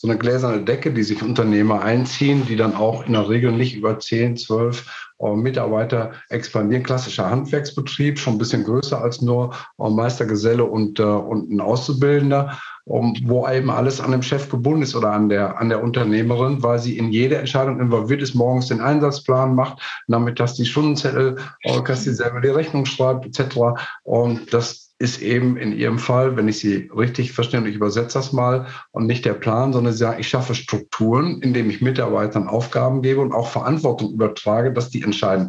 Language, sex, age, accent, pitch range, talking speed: German, male, 50-69, German, 110-130 Hz, 195 wpm